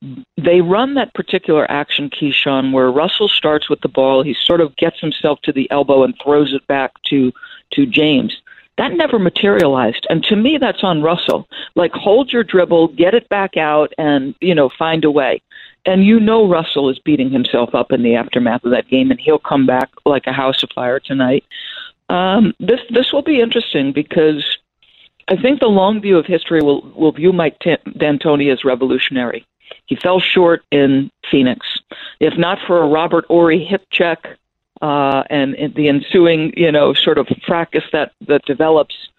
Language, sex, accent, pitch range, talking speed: English, female, American, 140-185 Hz, 185 wpm